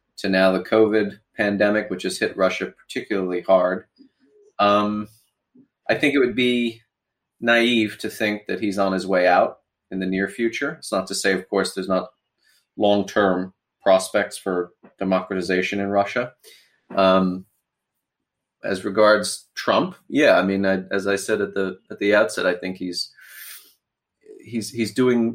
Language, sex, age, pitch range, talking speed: English, male, 30-49, 95-110 Hz, 155 wpm